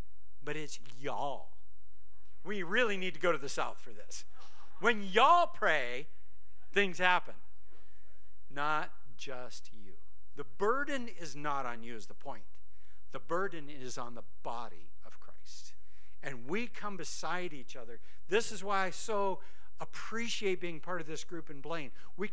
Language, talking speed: English, 155 wpm